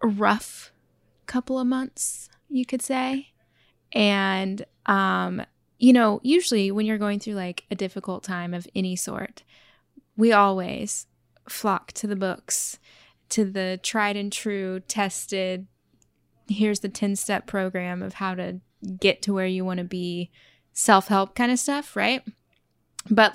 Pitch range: 190-230 Hz